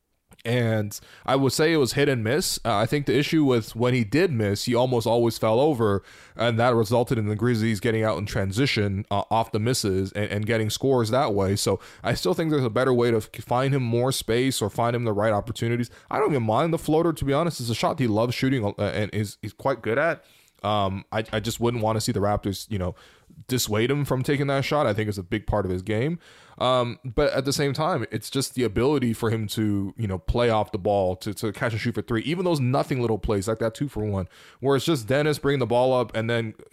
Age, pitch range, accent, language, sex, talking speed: 20-39, 110-130 Hz, American, English, male, 260 wpm